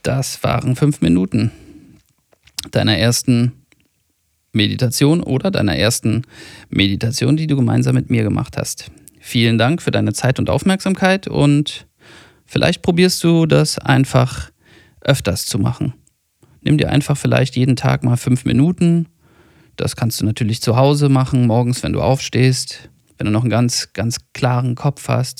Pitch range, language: 115-145 Hz, German